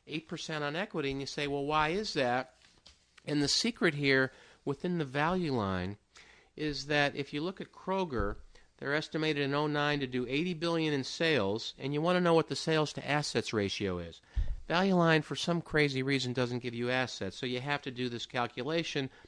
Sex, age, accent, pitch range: male, 50-69, American, 125-155 Hz